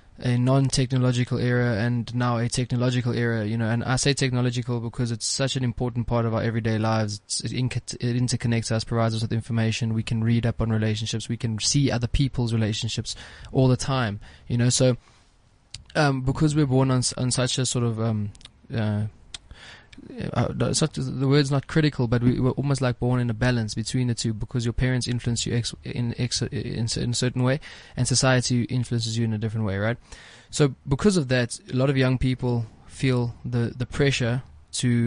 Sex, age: male, 20-39